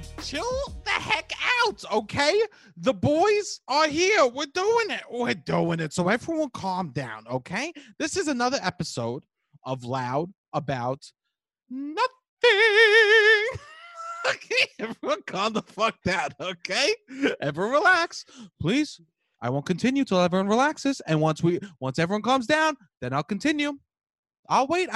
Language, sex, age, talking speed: English, male, 20-39, 135 wpm